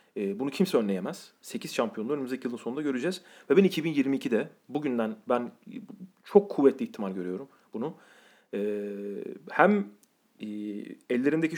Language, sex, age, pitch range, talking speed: Turkish, male, 40-59, 130-190 Hz, 110 wpm